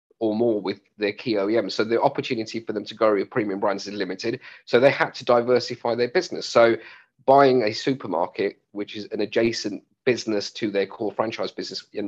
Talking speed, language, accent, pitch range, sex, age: 200 wpm, English, British, 105-125 Hz, male, 40-59